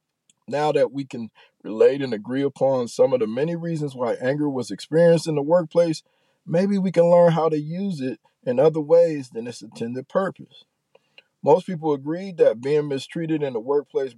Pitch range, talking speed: 135-195 Hz, 185 wpm